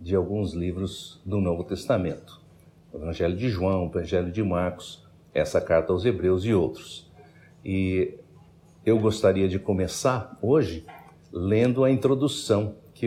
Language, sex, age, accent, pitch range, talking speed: Portuguese, male, 60-79, Brazilian, 90-110 Hz, 140 wpm